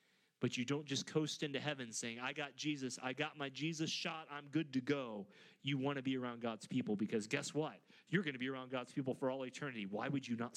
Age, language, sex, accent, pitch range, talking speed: 30-49, English, male, American, 130-165 Hz, 250 wpm